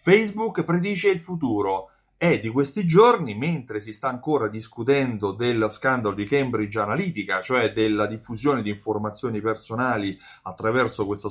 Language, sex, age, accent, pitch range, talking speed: Italian, male, 30-49, native, 110-170 Hz, 140 wpm